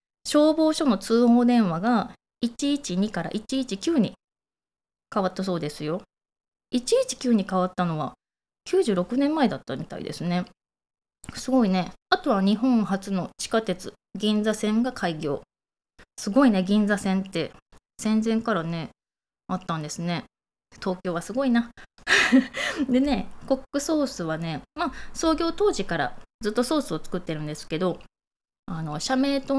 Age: 20-39